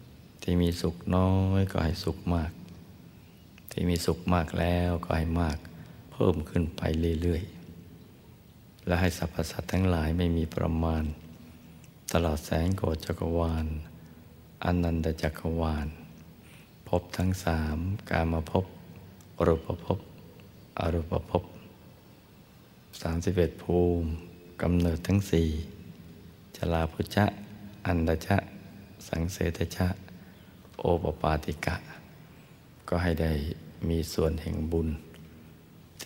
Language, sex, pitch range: Thai, male, 80-90 Hz